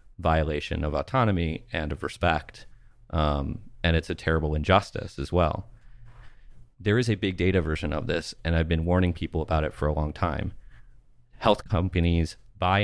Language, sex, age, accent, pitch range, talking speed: English, male, 30-49, American, 80-105 Hz, 170 wpm